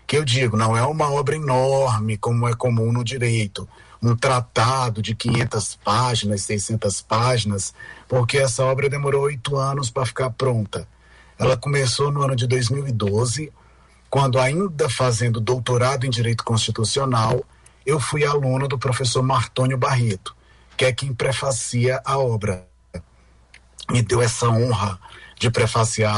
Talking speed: 140 wpm